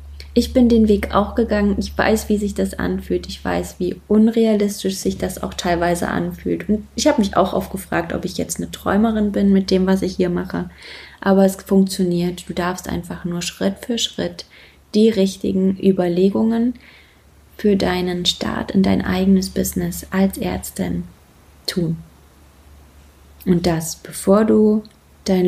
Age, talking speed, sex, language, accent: 20-39, 160 wpm, female, German, German